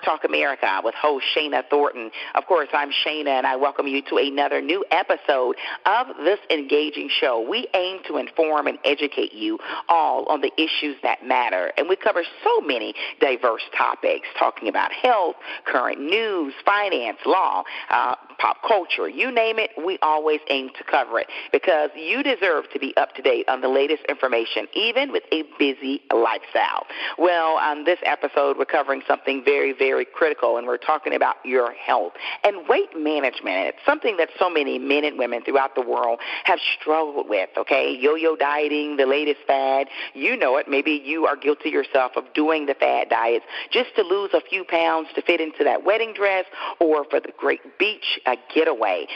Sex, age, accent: female, 40-59, American